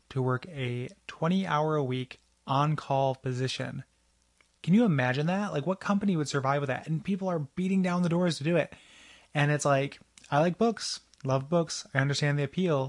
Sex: male